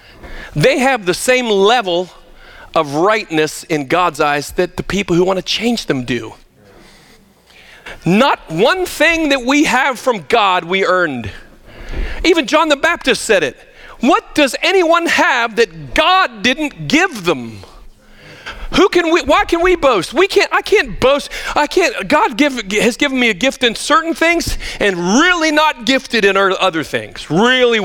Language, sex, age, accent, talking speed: English, male, 40-59, American, 165 wpm